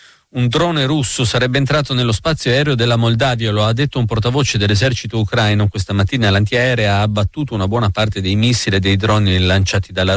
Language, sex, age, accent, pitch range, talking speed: Italian, male, 40-59, native, 100-125 Hz, 190 wpm